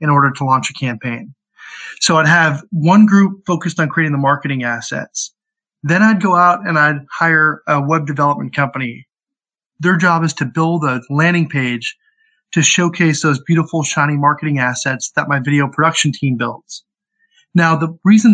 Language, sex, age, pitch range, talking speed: English, male, 30-49, 150-205 Hz, 170 wpm